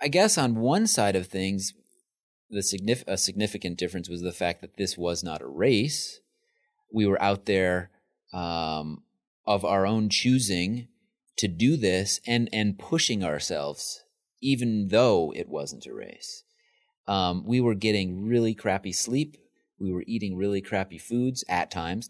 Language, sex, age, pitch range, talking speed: English, male, 30-49, 90-115 Hz, 155 wpm